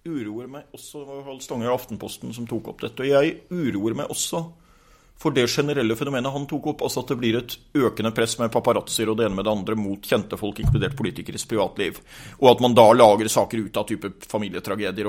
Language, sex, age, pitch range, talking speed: English, male, 40-59, 110-140 Hz, 200 wpm